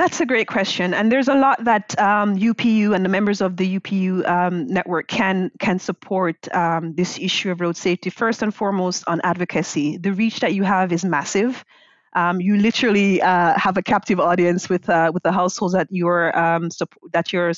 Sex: female